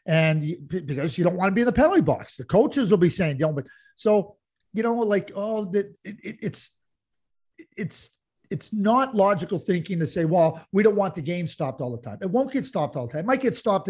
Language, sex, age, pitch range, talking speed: English, male, 50-69, 155-220 Hz, 250 wpm